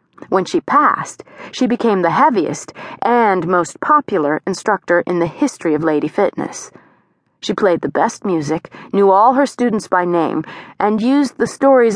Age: 30-49